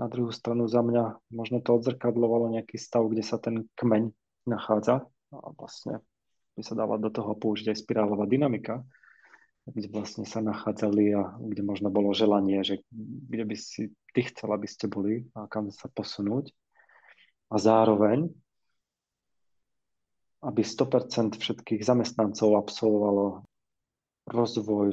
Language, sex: Czech, male